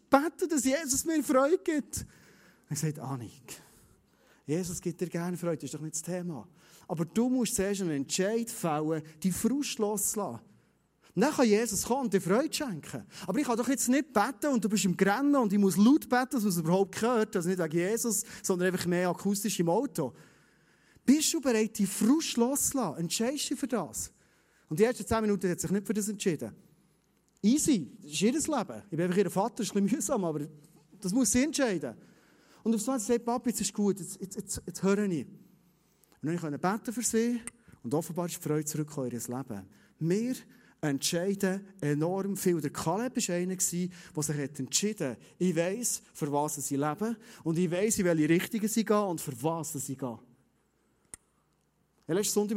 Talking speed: 200 wpm